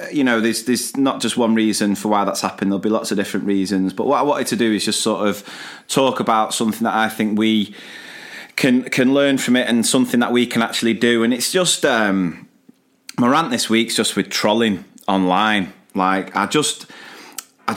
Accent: British